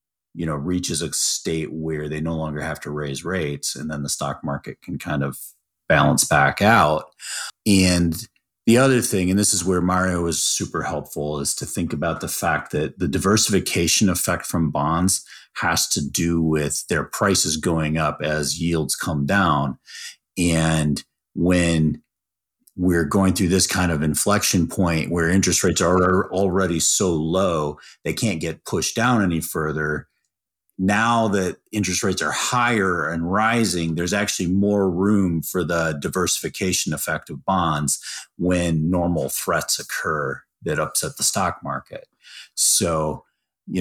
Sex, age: male, 30-49